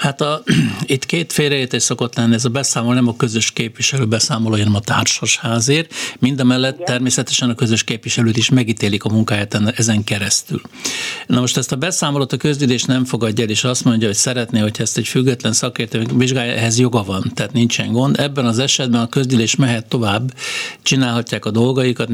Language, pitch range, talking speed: Hungarian, 115-135 Hz, 185 wpm